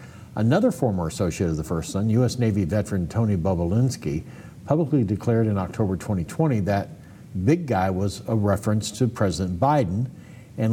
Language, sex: English, male